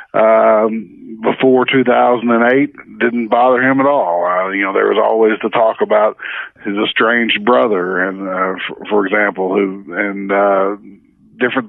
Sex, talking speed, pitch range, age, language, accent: male, 150 wpm, 105-120 Hz, 50-69, English, American